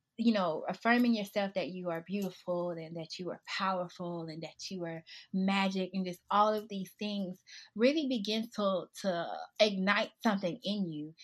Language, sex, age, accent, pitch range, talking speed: English, female, 20-39, American, 180-220 Hz, 170 wpm